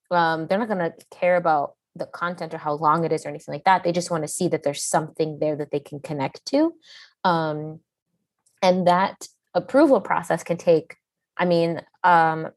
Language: English